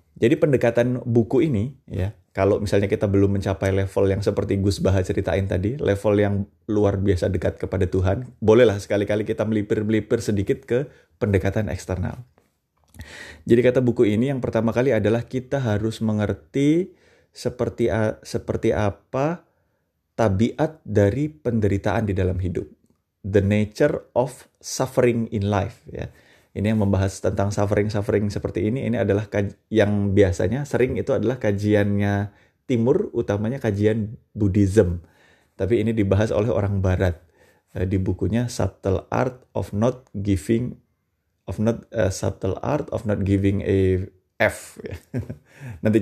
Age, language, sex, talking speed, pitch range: 20-39, Indonesian, male, 135 wpm, 95-115 Hz